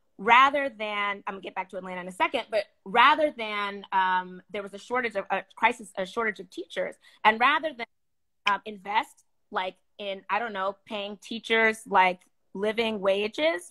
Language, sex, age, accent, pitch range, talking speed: English, female, 20-39, American, 210-285 Hz, 180 wpm